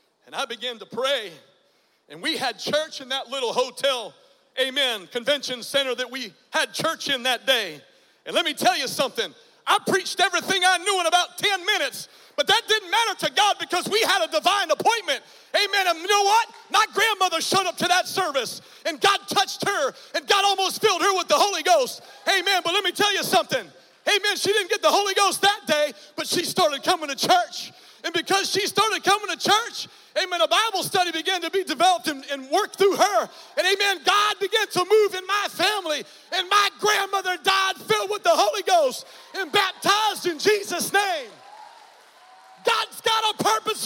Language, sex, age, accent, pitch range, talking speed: English, male, 40-59, American, 300-405 Hz, 195 wpm